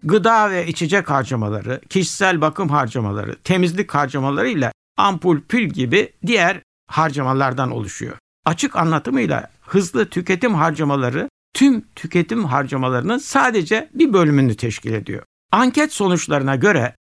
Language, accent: Turkish, native